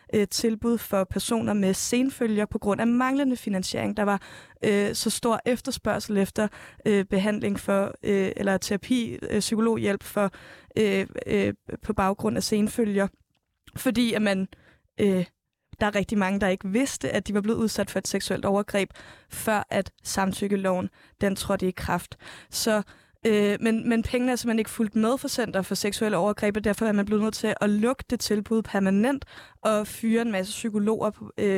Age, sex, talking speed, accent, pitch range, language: 20-39, female, 160 wpm, native, 200-225 Hz, Danish